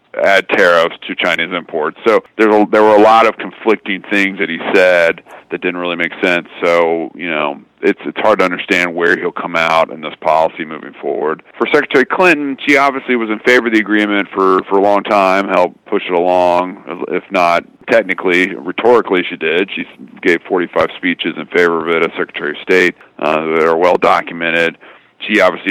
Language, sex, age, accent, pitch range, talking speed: English, male, 40-59, American, 85-105 Hz, 190 wpm